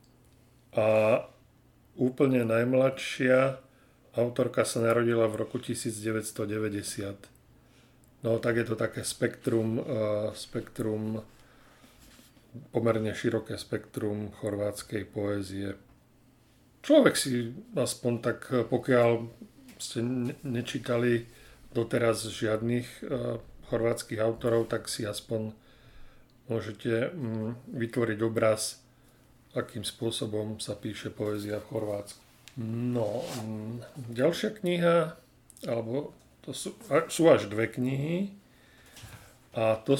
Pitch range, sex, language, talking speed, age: 110-130 Hz, male, Slovak, 85 wpm, 40-59